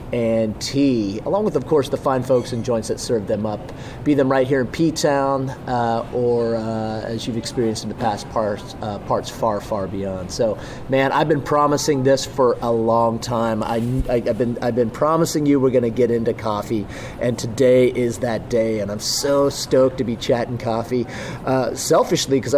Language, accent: English, American